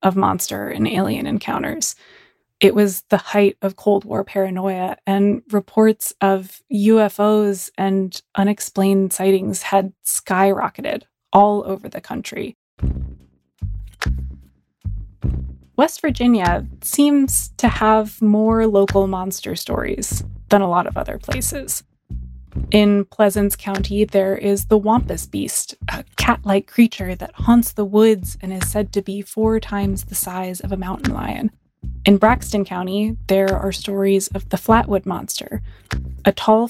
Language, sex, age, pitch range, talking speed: English, female, 20-39, 180-210 Hz, 130 wpm